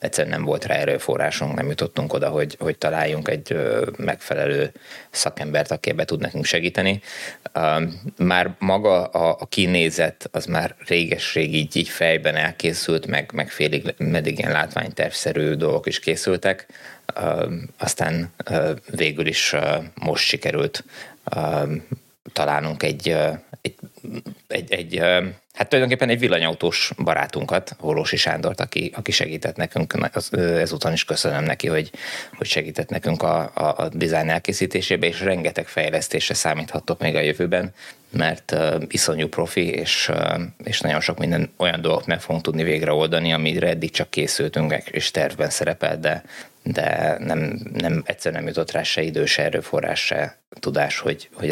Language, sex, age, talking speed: Hungarian, male, 20-39, 135 wpm